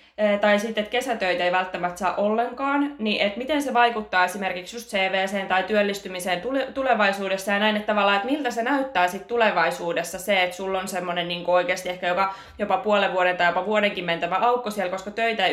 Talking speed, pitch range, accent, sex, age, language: 195 wpm, 180-220 Hz, native, female, 20-39, Finnish